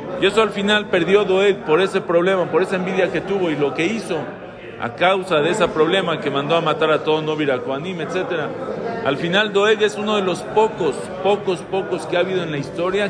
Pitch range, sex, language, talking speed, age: 150-185 Hz, male, Spanish, 220 wpm, 50-69